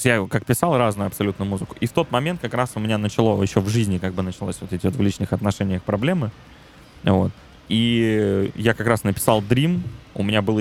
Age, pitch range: 20-39, 95-115 Hz